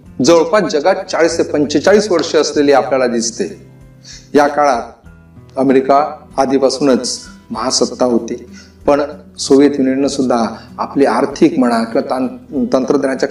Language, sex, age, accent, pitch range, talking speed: Marathi, male, 40-59, native, 130-185 Hz, 110 wpm